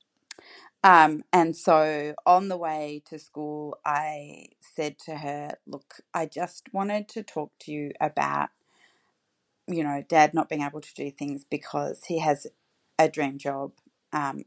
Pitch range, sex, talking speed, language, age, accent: 145-180 Hz, female, 155 wpm, English, 40-59, Australian